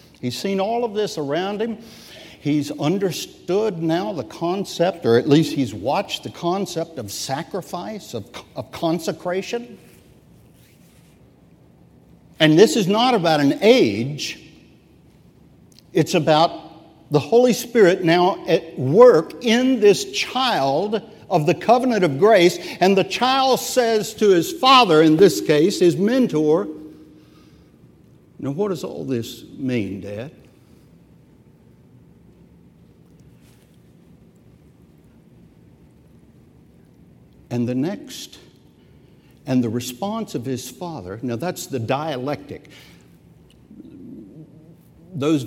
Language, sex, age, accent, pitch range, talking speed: English, male, 60-79, American, 130-190 Hz, 105 wpm